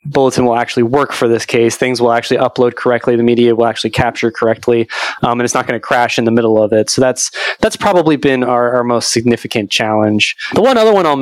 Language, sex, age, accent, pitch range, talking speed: English, male, 20-39, American, 120-160 Hz, 240 wpm